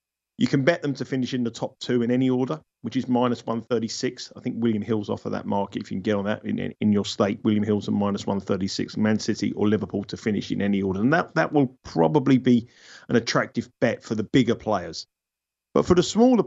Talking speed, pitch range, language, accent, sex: 255 wpm, 110-130 Hz, English, British, male